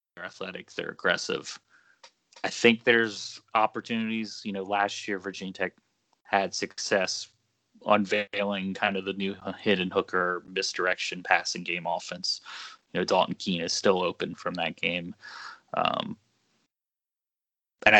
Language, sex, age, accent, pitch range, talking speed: English, male, 20-39, American, 95-110 Hz, 125 wpm